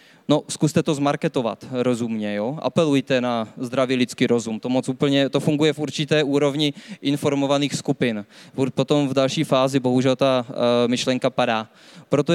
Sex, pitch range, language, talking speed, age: male, 135-155 Hz, Czech, 145 wpm, 20-39